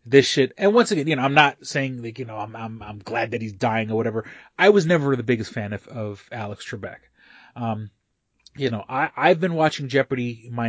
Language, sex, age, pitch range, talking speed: English, male, 30-49, 115-145 Hz, 230 wpm